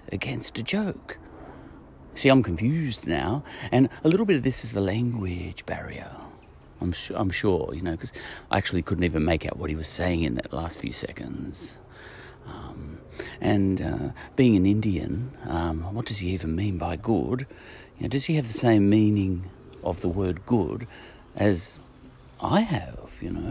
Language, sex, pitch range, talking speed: English, male, 90-120 Hz, 180 wpm